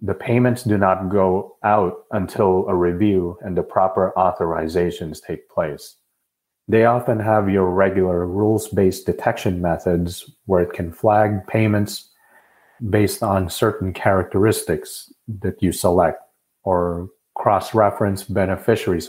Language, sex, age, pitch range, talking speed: English, male, 30-49, 90-105 Hz, 120 wpm